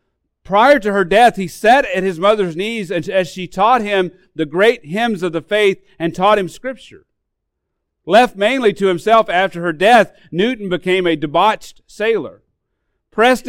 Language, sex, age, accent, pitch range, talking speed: English, male, 40-59, American, 160-210 Hz, 165 wpm